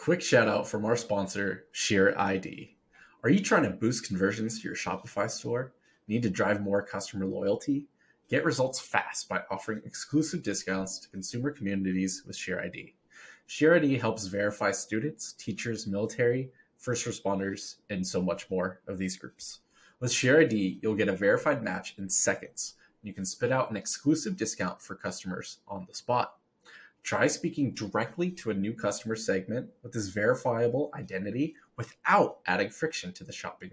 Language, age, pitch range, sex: English, 20-39, 100-140 Hz, male